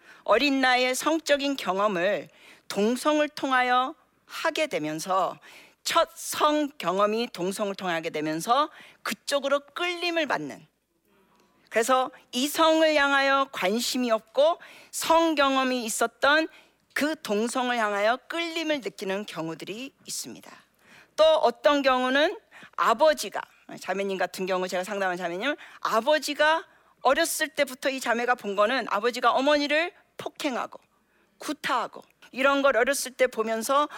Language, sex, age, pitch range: Korean, female, 40-59, 225-305 Hz